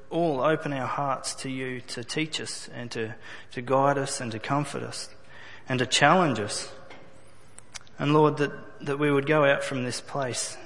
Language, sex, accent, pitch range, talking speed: English, male, Australian, 110-140 Hz, 185 wpm